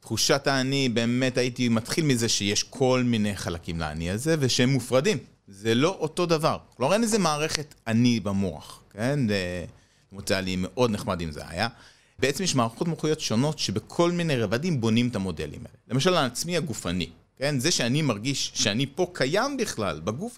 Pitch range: 110-160 Hz